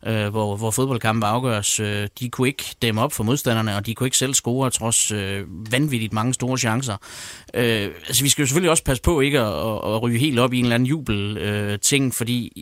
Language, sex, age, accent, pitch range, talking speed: Danish, male, 30-49, native, 105-125 Hz, 235 wpm